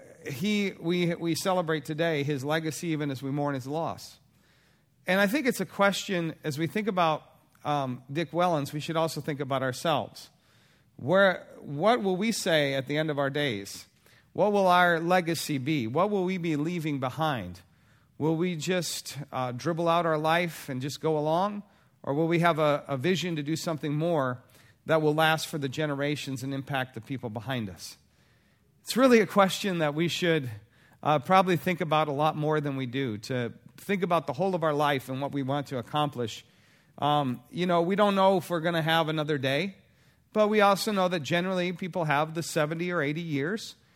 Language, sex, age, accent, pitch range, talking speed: English, male, 40-59, American, 140-180 Hz, 200 wpm